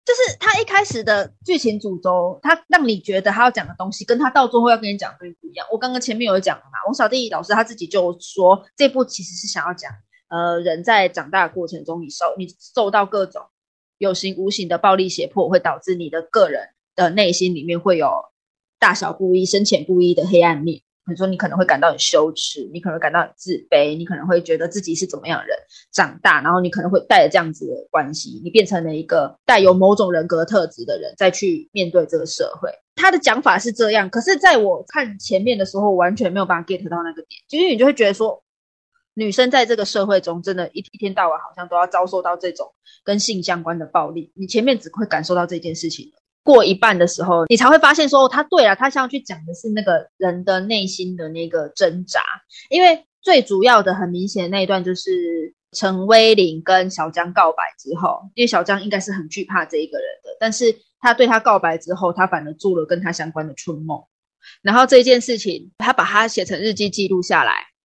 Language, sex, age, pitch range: Chinese, female, 20-39, 175-230 Hz